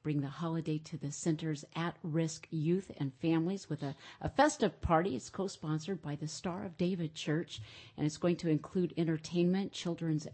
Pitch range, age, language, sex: 150-185 Hz, 50-69, English, female